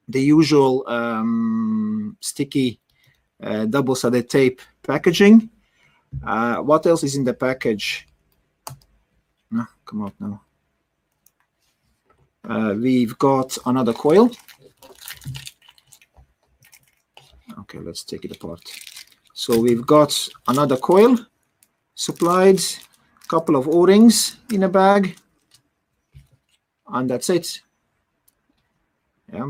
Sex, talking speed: male, 90 wpm